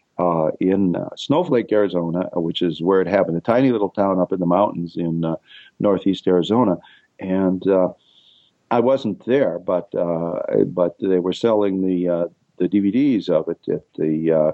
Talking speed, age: 170 wpm, 50-69